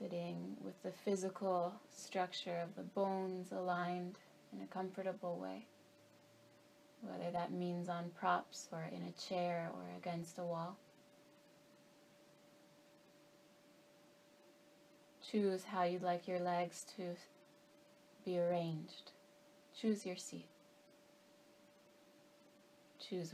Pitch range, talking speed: 175-200 Hz, 100 wpm